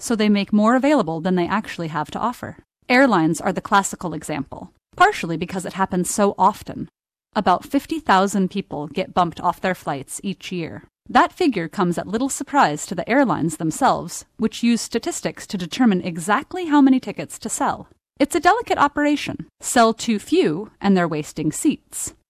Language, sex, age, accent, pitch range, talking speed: Hindi, female, 30-49, American, 145-195 Hz, 170 wpm